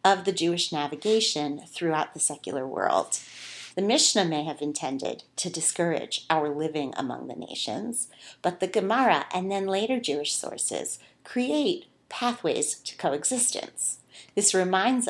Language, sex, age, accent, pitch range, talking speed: English, female, 40-59, American, 155-210 Hz, 135 wpm